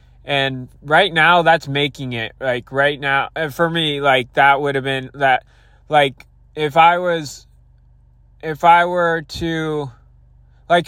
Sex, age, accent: male, 20-39, American